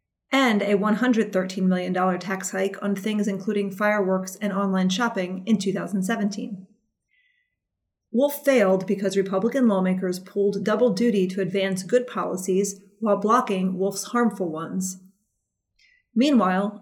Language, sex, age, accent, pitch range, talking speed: English, female, 30-49, American, 190-230 Hz, 120 wpm